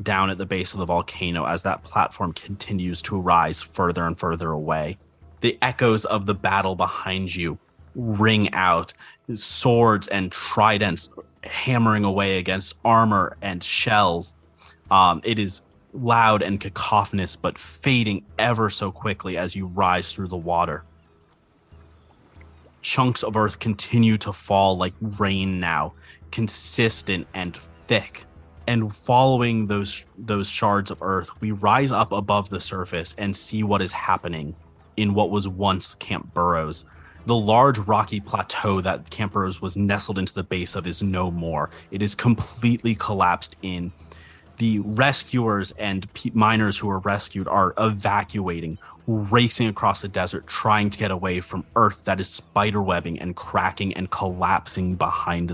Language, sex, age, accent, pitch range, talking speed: English, male, 30-49, American, 85-105 Hz, 150 wpm